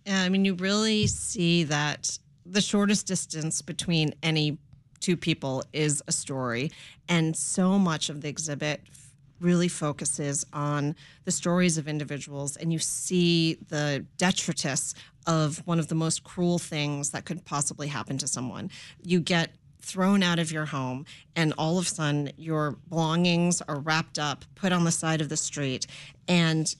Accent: American